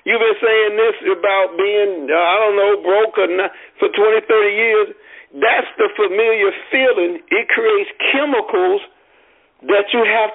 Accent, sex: American, male